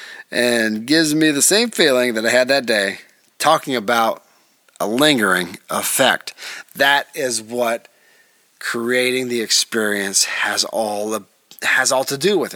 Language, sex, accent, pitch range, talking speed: English, male, American, 120-175 Hz, 135 wpm